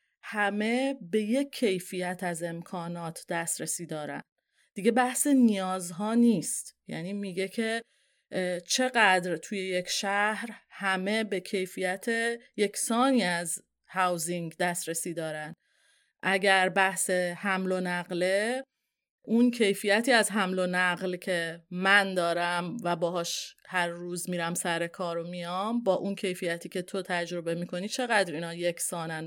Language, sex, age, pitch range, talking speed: Persian, female, 30-49, 175-220 Hz, 125 wpm